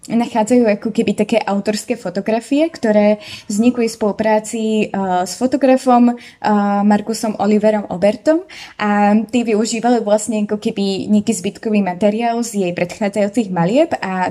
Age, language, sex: 20-39, Slovak, female